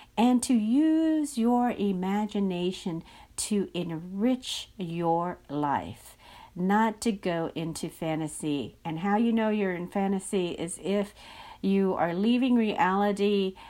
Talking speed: 120 wpm